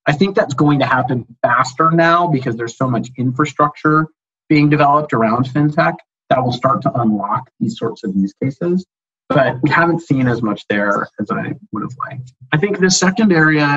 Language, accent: English, American